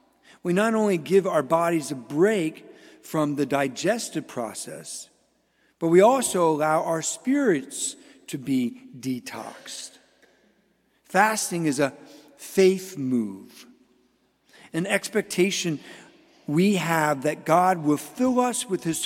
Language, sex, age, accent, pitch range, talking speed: English, male, 50-69, American, 145-200 Hz, 115 wpm